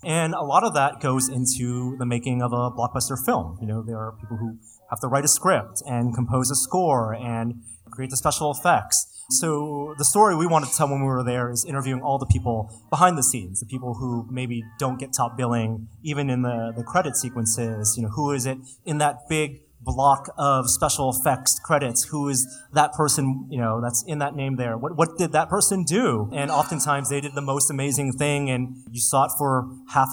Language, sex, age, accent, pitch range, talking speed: English, male, 30-49, American, 120-145 Hz, 220 wpm